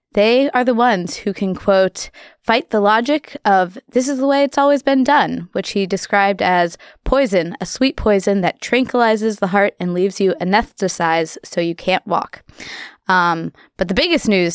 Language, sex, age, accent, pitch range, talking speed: English, female, 20-39, American, 180-235 Hz, 180 wpm